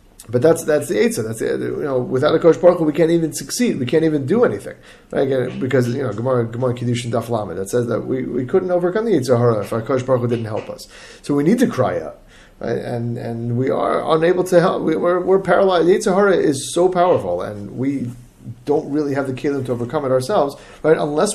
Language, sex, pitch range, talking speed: English, male, 120-155 Hz, 225 wpm